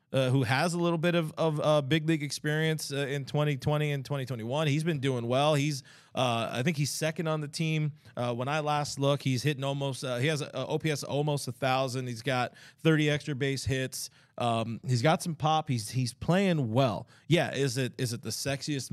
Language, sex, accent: English, male, American